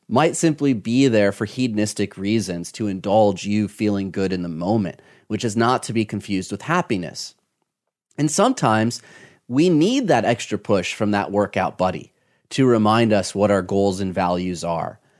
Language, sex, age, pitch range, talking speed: English, male, 30-49, 100-125 Hz, 170 wpm